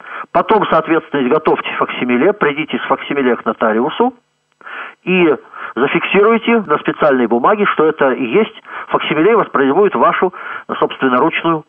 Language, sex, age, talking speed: Russian, male, 40-59, 120 wpm